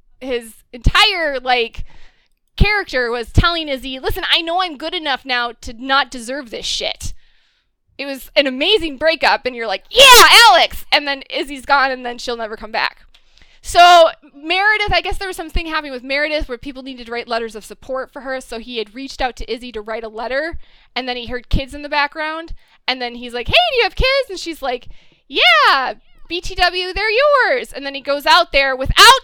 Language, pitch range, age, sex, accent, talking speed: English, 245-355 Hz, 20-39, female, American, 205 wpm